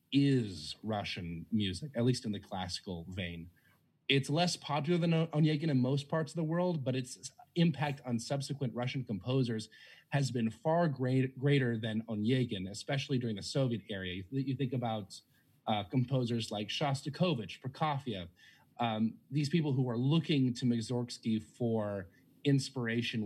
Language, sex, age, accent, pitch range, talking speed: English, male, 30-49, American, 110-145 Hz, 145 wpm